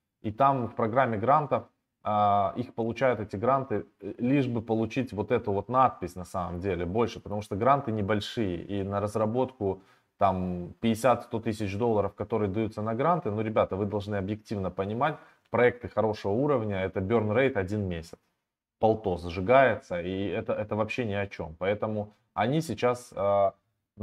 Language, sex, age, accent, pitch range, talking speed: Russian, male, 20-39, native, 100-120 Hz, 155 wpm